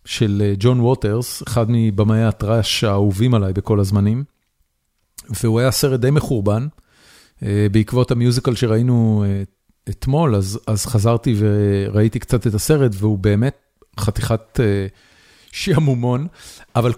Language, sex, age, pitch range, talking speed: Hebrew, male, 40-59, 100-120 Hz, 110 wpm